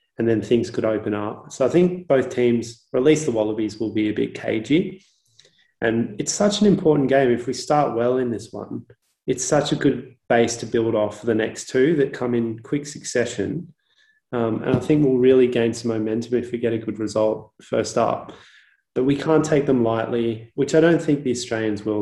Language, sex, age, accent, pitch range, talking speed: English, male, 20-39, Australian, 110-130 Hz, 220 wpm